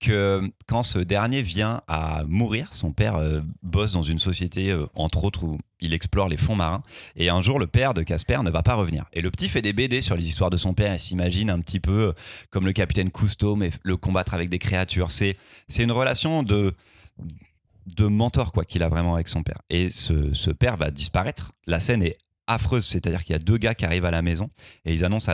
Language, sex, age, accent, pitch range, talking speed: French, male, 30-49, French, 85-110 Hz, 235 wpm